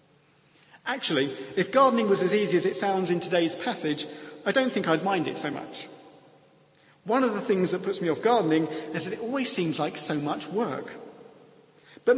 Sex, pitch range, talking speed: male, 155-230 Hz, 190 wpm